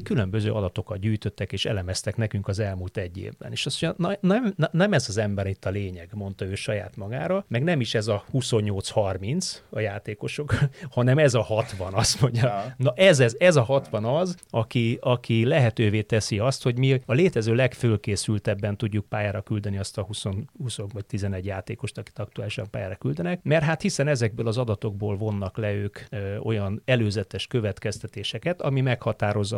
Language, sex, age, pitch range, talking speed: Hungarian, male, 30-49, 100-125 Hz, 170 wpm